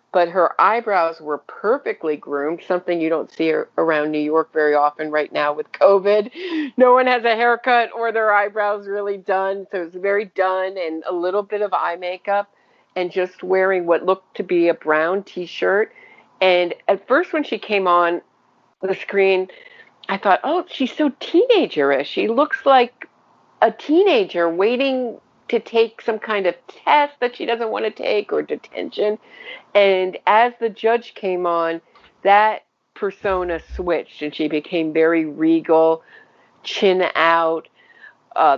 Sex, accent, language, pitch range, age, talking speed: female, American, English, 165-230 Hz, 50-69, 160 wpm